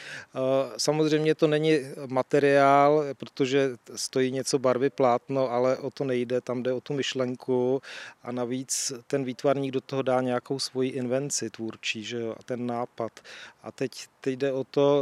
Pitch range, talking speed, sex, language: 125-135 Hz, 150 wpm, male, Czech